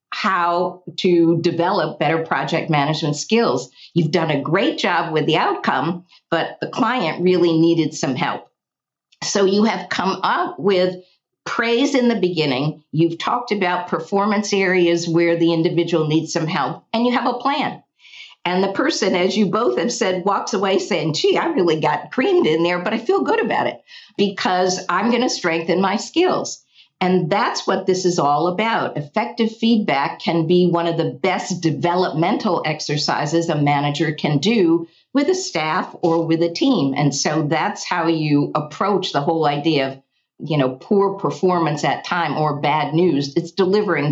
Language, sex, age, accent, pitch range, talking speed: English, female, 50-69, American, 155-195 Hz, 175 wpm